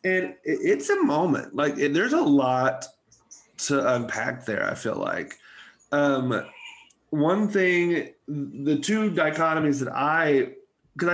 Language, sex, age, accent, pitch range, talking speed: English, male, 30-49, American, 120-150 Hz, 130 wpm